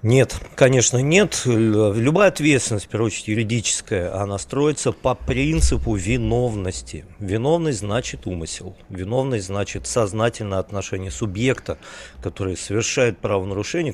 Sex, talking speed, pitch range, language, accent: male, 110 wpm, 110-150 Hz, Russian, native